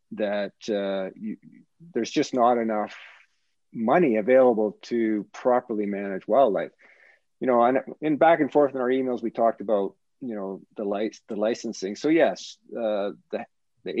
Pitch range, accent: 100-125 Hz, American